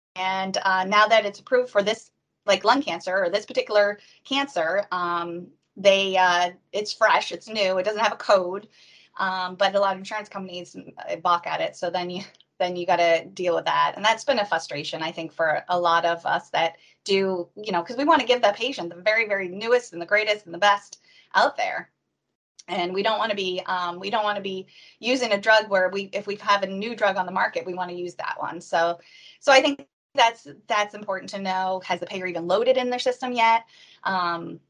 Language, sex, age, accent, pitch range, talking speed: English, female, 20-39, American, 175-210 Hz, 230 wpm